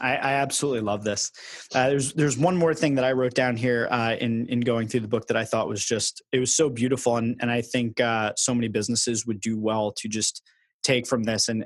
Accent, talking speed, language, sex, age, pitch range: American, 245 wpm, English, male, 20-39, 110-130 Hz